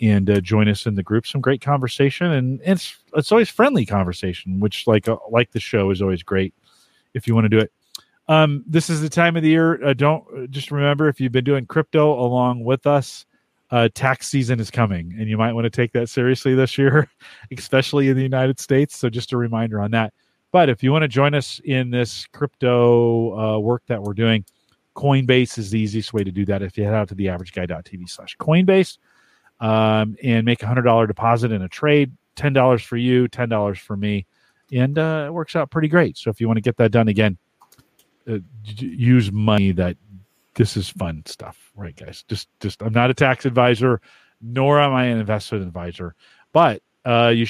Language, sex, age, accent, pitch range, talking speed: English, male, 40-59, American, 105-135 Hz, 210 wpm